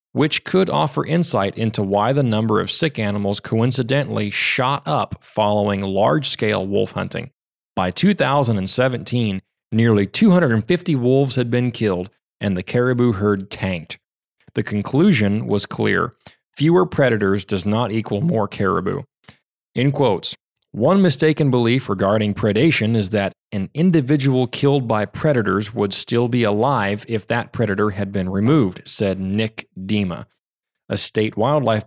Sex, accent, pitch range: male, American, 100-135 Hz